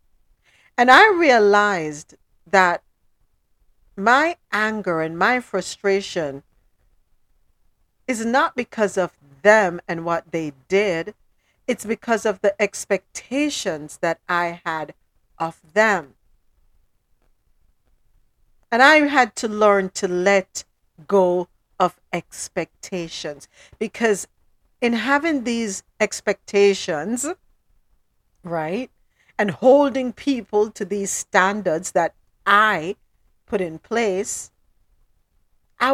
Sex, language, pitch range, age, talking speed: female, English, 180-245 Hz, 50-69, 95 wpm